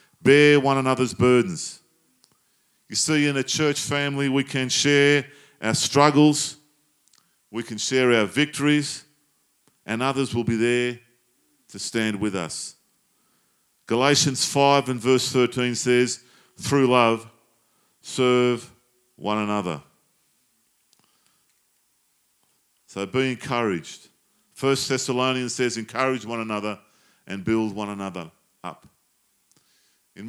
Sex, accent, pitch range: male, Australian, 105-135 Hz